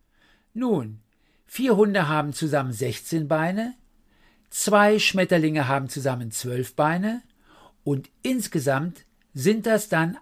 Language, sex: German, male